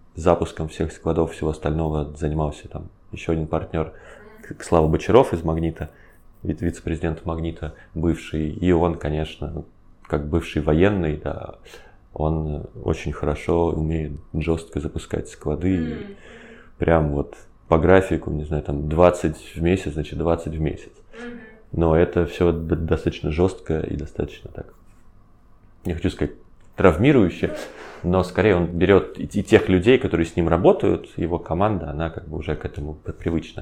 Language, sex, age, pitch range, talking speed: Russian, male, 20-39, 75-90 Hz, 135 wpm